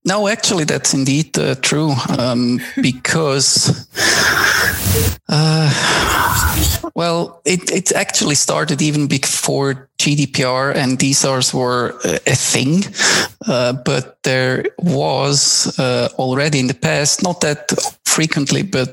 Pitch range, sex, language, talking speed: 130-160 Hz, male, English, 110 wpm